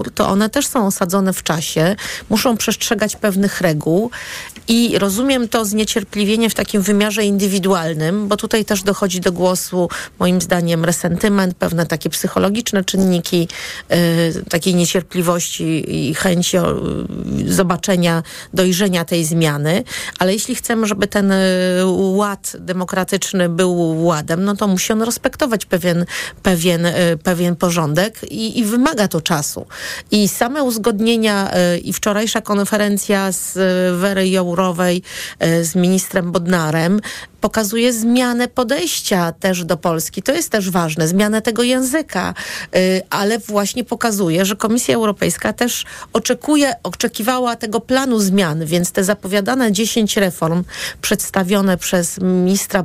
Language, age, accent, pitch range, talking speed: Polish, 40-59, native, 180-220 Hz, 130 wpm